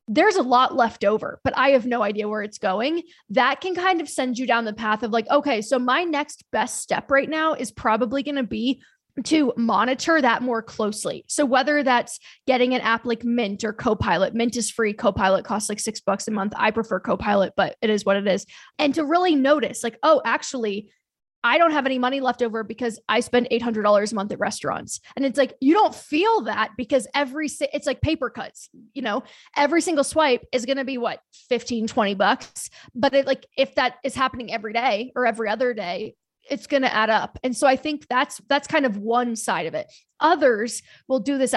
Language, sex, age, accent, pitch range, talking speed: English, female, 10-29, American, 225-280 Hz, 220 wpm